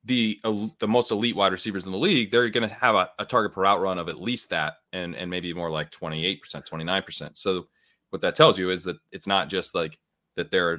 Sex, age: male, 30-49